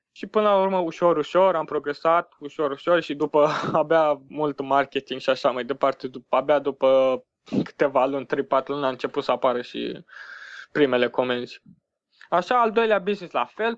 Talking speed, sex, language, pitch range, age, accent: 165 wpm, male, Romanian, 135-170 Hz, 20-39, native